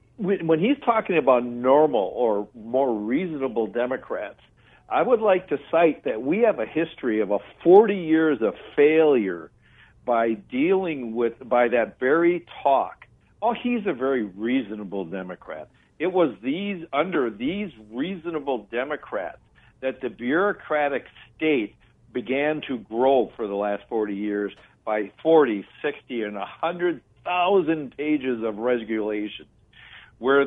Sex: male